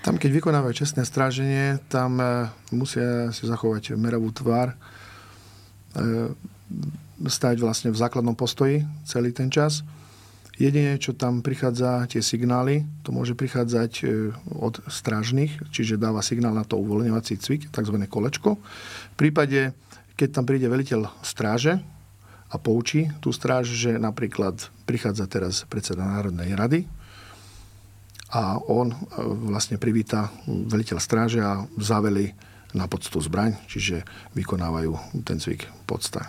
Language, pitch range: Slovak, 100-125 Hz